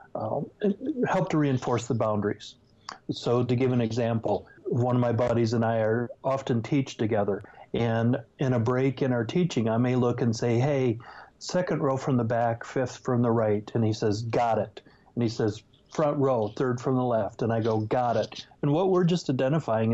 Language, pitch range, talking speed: English, 110-135 Hz, 200 wpm